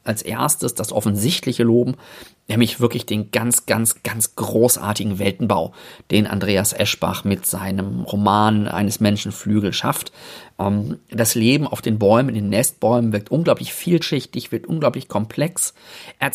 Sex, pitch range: male, 110-145 Hz